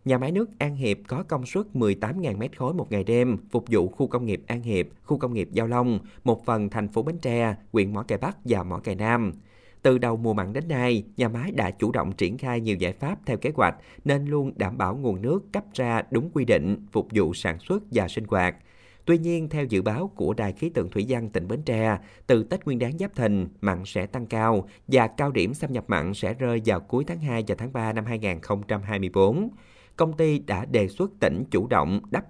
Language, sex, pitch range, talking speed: Vietnamese, male, 100-130 Hz, 235 wpm